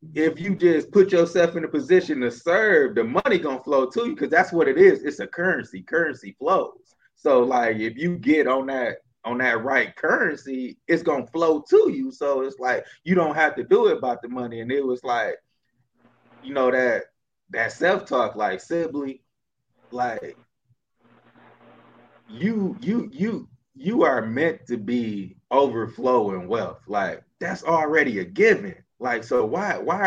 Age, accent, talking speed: 20-39, American, 170 wpm